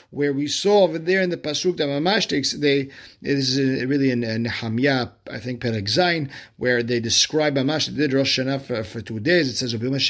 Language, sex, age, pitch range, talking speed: English, male, 50-69, 120-160 Hz, 190 wpm